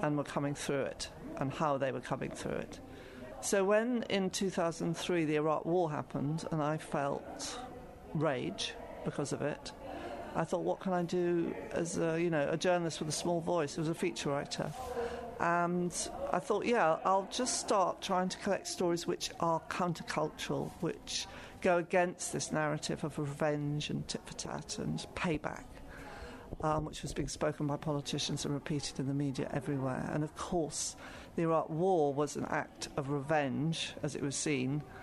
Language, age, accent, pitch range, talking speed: English, 50-69, British, 145-175 Hz, 170 wpm